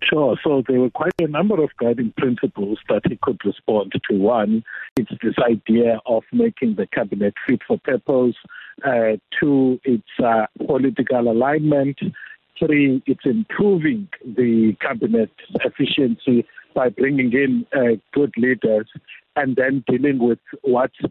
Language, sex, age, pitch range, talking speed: English, male, 50-69, 120-155 Hz, 140 wpm